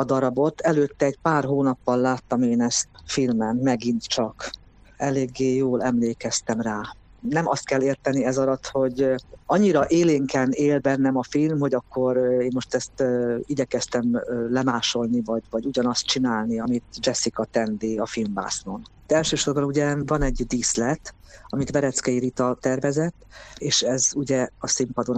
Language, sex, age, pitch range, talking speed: Hungarian, female, 50-69, 125-145 Hz, 145 wpm